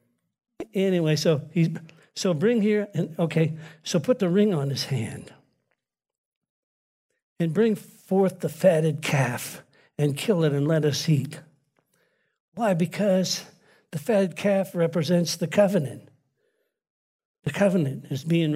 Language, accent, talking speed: English, American, 130 wpm